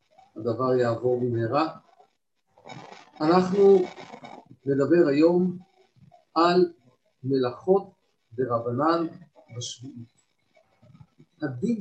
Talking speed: 60 wpm